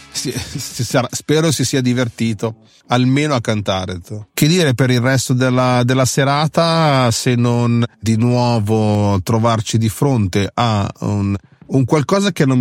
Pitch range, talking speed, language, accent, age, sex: 105-125 Hz, 135 wpm, Italian, native, 30-49, male